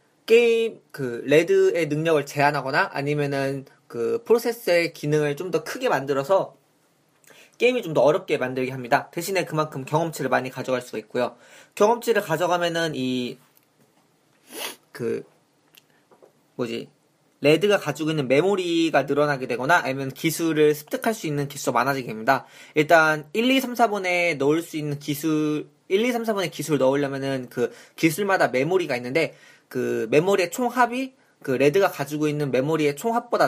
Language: Korean